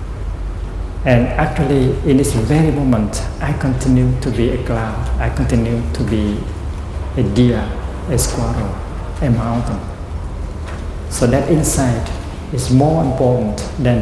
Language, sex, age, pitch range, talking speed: English, male, 60-79, 85-125 Hz, 125 wpm